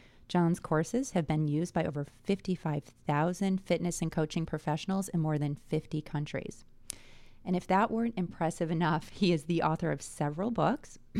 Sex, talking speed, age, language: female, 160 wpm, 30-49, English